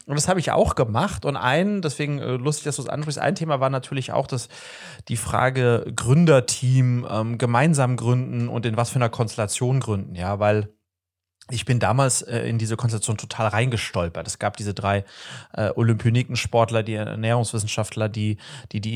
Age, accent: 30-49, German